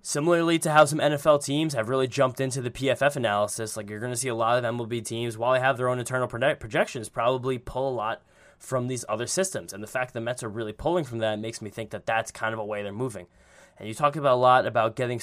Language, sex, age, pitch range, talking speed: English, male, 10-29, 110-130 Hz, 270 wpm